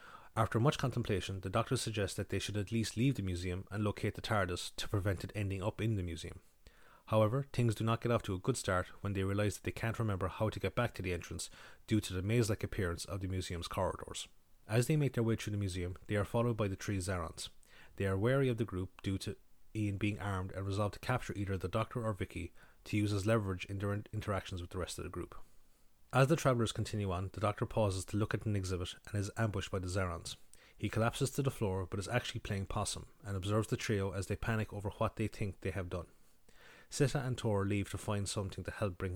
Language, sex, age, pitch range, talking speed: English, male, 30-49, 95-110 Hz, 245 wpm